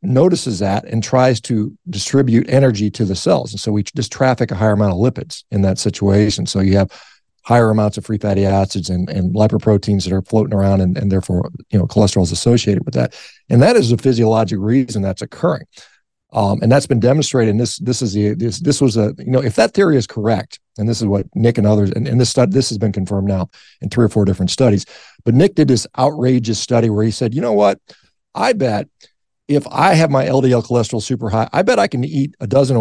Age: 50-69